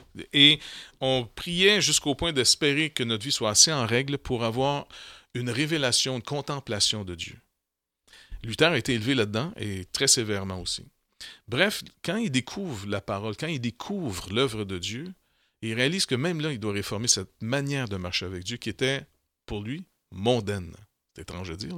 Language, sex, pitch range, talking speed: French, male, 105-140 Hz, 180 wpm